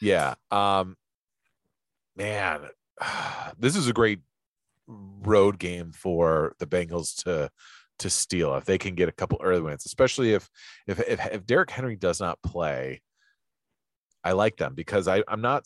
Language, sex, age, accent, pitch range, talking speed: English, male, 30-49, American, 80-100 Hz, 155 wpm